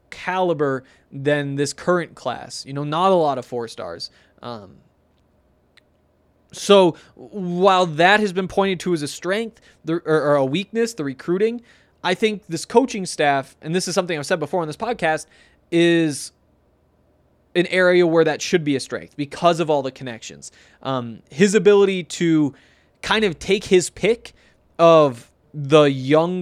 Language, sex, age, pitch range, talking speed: English, male, 20-39, 140-180 Hz, 165 wpm